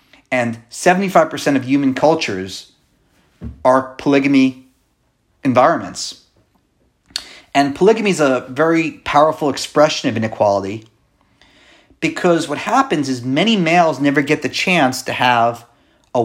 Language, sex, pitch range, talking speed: English, male, 130-165 Hz, 110 wpm